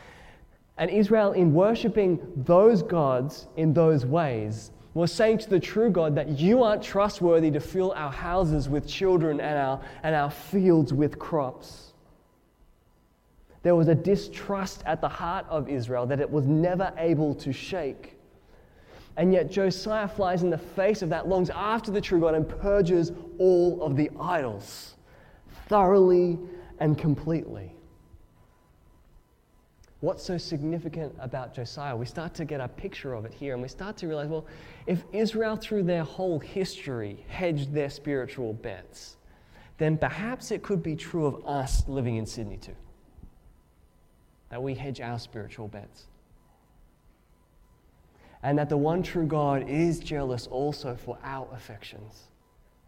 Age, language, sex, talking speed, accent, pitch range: 20-39, English, male, 150 wpm, Australian, 130-180 Hz